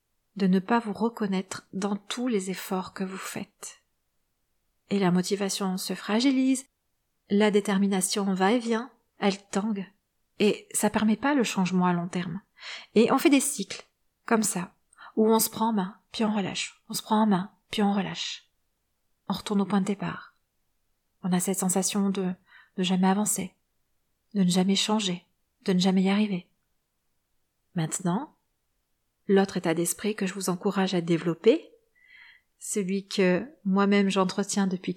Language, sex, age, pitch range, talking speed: French, female, 40-59, 190-225 Hz, 165 wpm